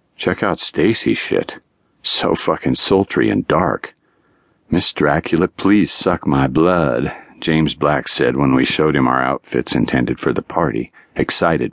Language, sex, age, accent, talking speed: English, male, 50-69, American, 150 wpm